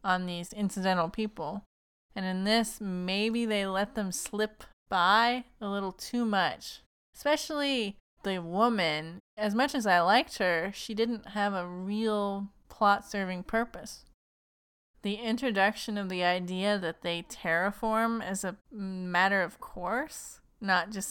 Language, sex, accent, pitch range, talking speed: English, female, American, 190-230 Hz, 140 wpm